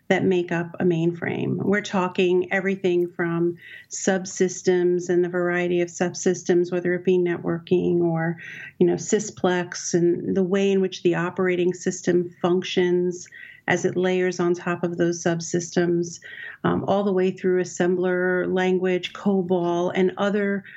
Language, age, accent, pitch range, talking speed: English, 40-59, American, 175-195 Hz, 145 wpm